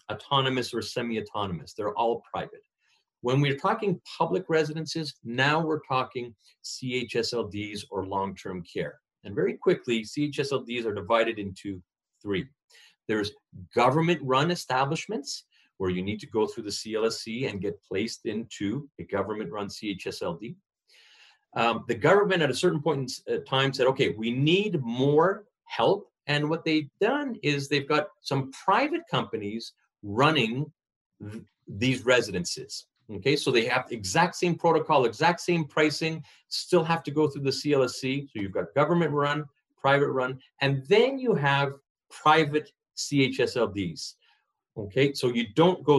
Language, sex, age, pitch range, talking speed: English, male, 40-59, 115-155 Hz, 140 wpm